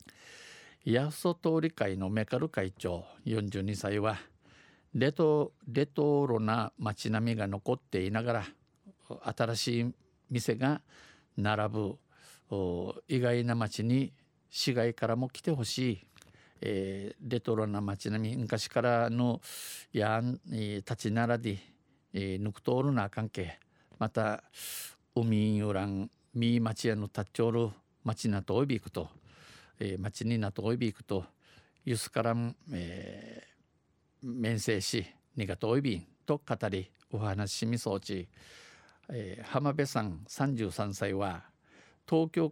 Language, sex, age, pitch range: Japanese, male, 50-69, 105-125 Hz